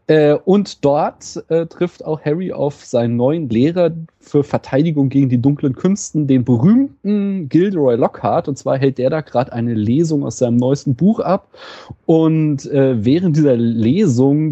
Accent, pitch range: German, 125-165 Hz